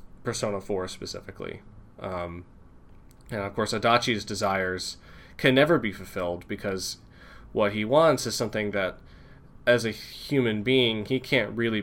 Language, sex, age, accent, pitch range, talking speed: English, male, 20-39, American, 100-125 Hz, 135 wpm